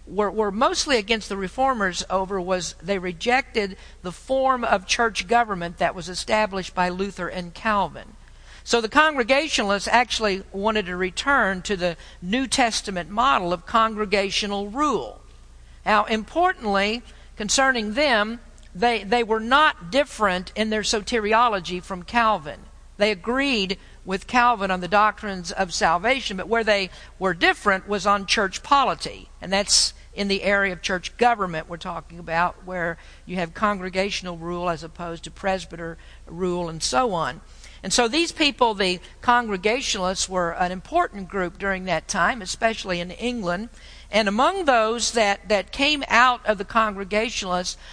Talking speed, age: 150 wpm, 50-69